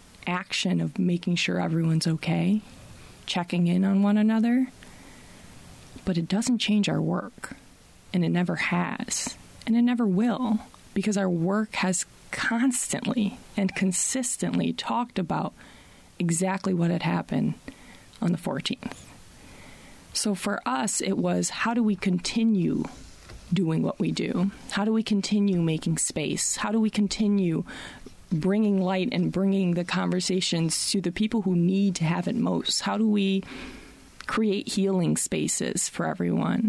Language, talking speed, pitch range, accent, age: English, 140 wpm, 175-215 Hz, American, 20-39